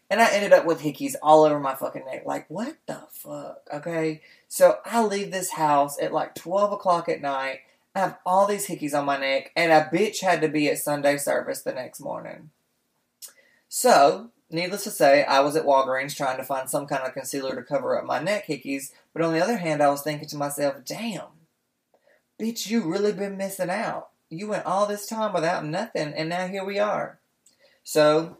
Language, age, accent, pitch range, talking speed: English, 20-39, American, 150-205 Hz, 205 wpm